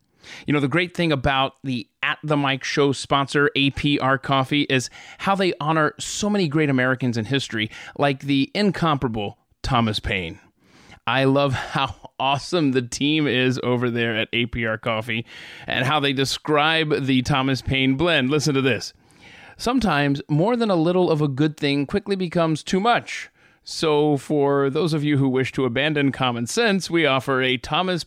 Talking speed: 170 wpm